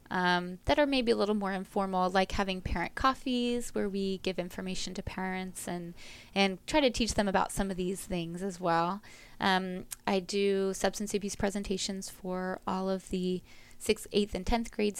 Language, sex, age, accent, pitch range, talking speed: English, female, 20-39, American, 185-210 Hz, 185 wpm